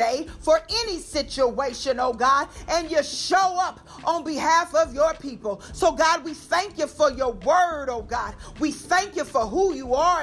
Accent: American